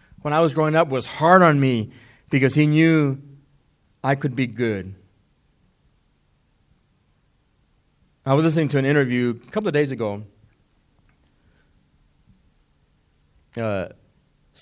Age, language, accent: 30-49, English, American